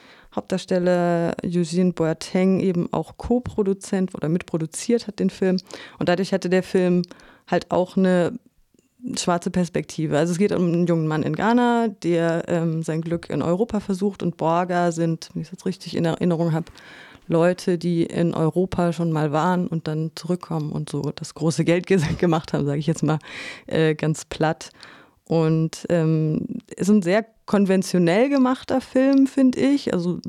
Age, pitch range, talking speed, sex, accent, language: 30-49, 170-200 Hz, 165 wpm, female, German, German